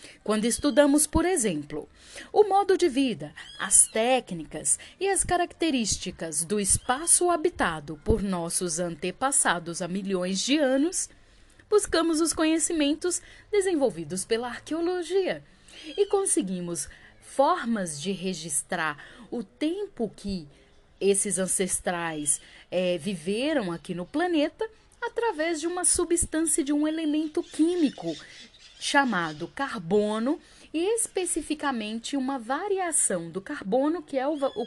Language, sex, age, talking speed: Portuguese, female, 10-29, 105 wpm